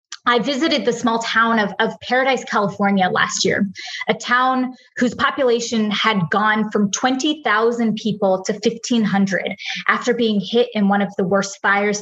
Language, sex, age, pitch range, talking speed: English, female, 20-39, 200-240 Hz, 155 wpm